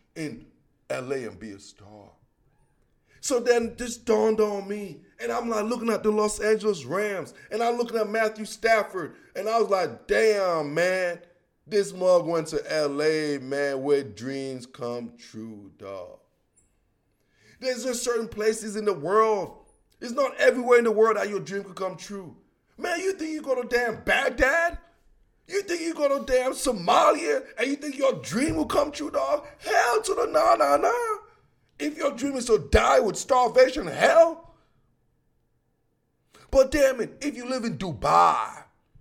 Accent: American